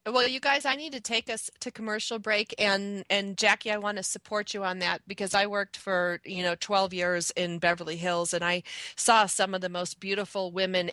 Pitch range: 185-225 Hz